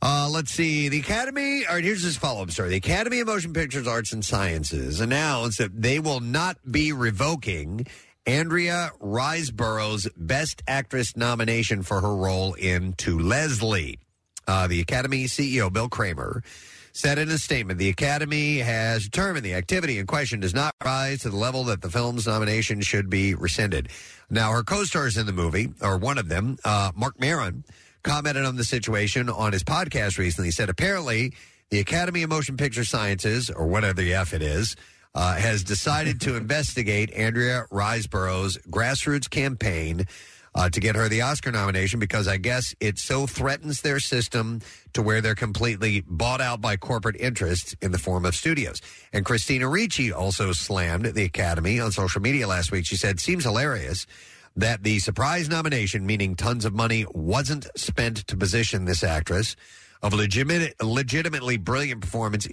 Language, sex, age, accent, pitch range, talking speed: English, male, 50-69, American, 100-135 Hz, 165 wpm